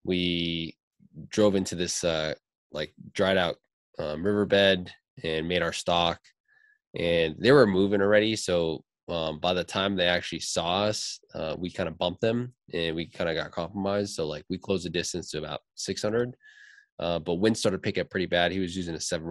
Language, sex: English, male